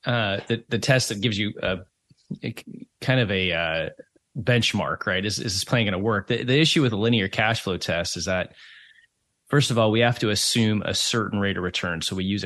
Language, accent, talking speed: English, American, 230 wpm